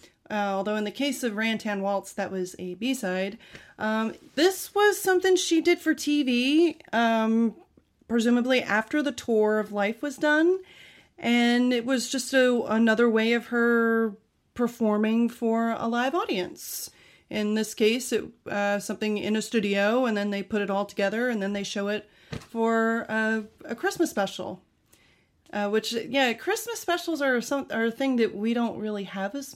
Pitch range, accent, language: 215-295 Hz, American, English